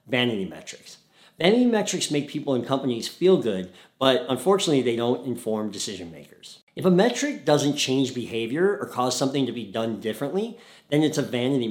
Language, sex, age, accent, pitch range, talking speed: English, male, 50-69, American, 115-170 Hz, 175 wpm